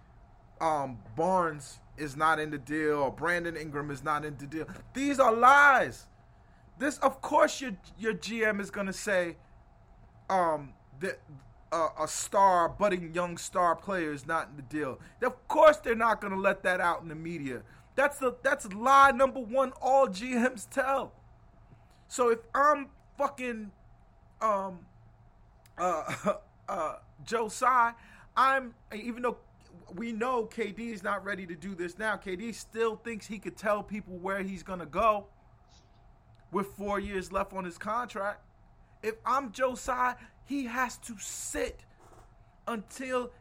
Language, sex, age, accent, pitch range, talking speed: English, male, 30-49, American, 155-240 Hz, 150 wpm